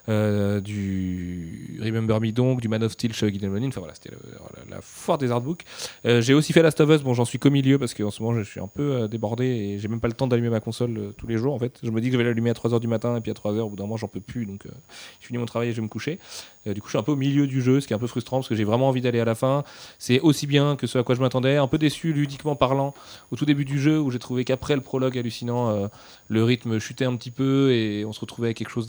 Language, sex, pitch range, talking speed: French, male, 110-135 Hz, 320 wpm